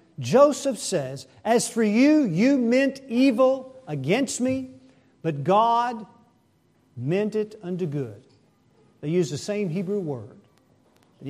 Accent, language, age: American, English, 50-69